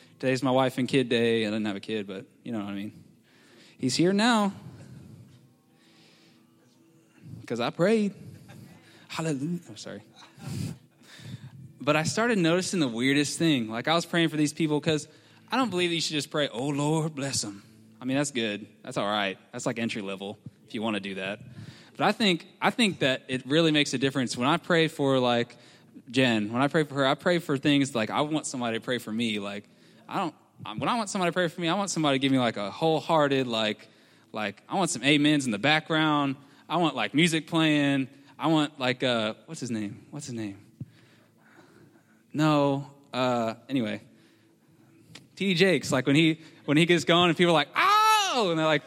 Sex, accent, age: male, American, 10-29